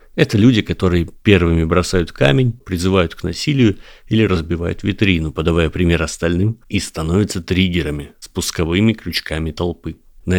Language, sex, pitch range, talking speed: Russian, male, 85-105 Hz, 125 wpm